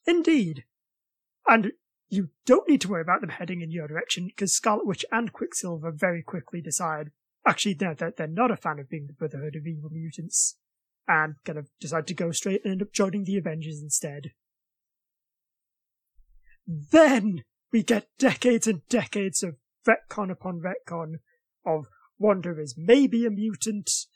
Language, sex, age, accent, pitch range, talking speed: English, male, 20-39, British, 165-215 Hz, 160 wpm